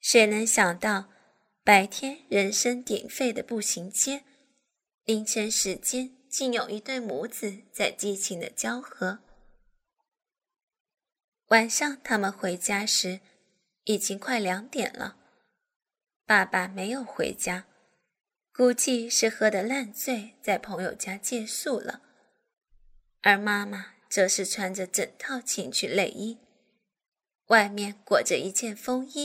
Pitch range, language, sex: 195-255 Hz, Chinese, female